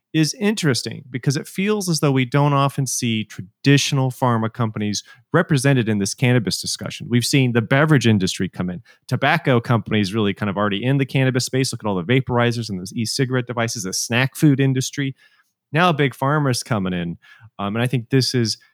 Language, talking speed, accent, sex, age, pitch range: English, 190 wpm, American, male, 30-49, 110-135 Hz